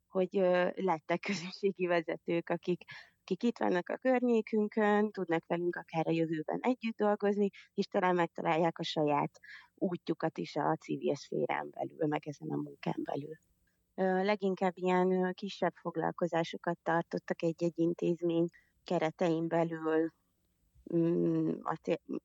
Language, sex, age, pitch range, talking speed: Hungarian, female, 30-49, 160-185 Hz, 115 wpm